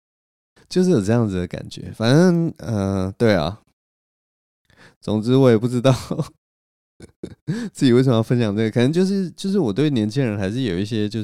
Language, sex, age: Chinese, male, 20-39